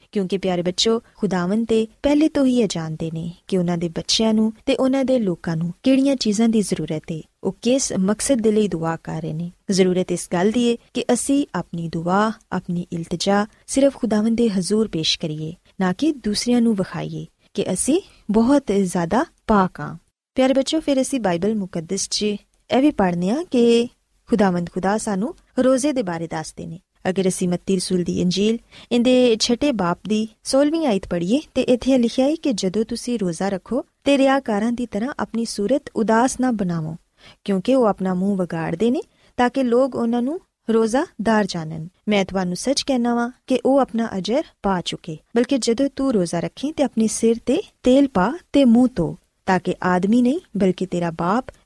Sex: female